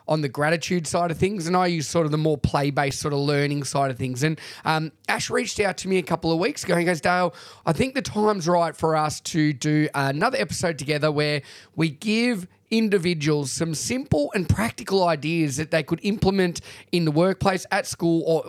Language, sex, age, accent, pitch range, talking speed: English, male, 20-39, Australian, 150-190 Hz, 215 wpm